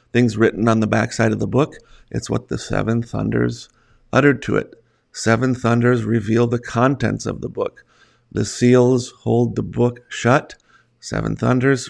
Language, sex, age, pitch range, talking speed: English, male, 50-69, 110-125 Hz, 160 wpm